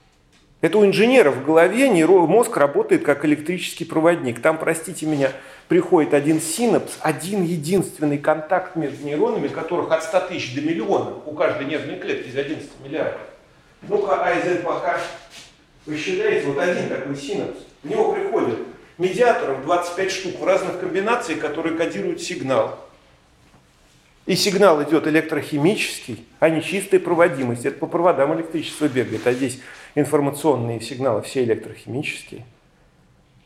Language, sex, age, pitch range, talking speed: Russian, male, 40-59, 140-185 Hz, 130 wpm